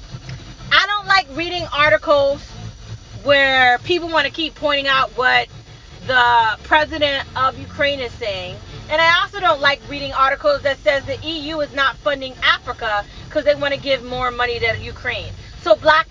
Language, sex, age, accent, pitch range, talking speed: English, female, 30-49, American, 260-330 Hz, 160 wpm